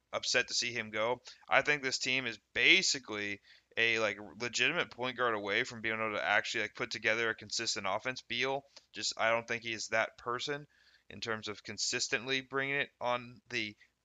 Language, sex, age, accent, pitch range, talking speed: English, male, 20-39, American, 115-140 Hz, 190 wpm